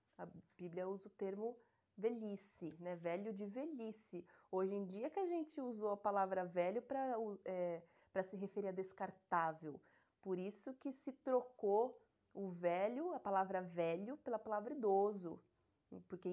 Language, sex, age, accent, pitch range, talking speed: Portuguese, female, 20-39, Brazilian, 185-240 Hz, 140 wpm